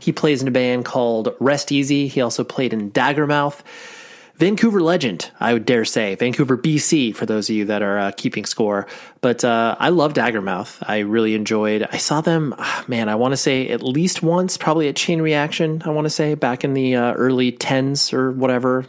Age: 30-49